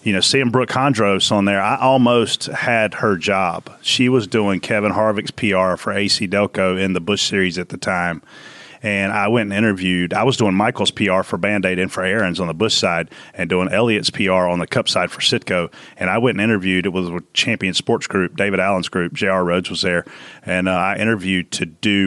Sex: male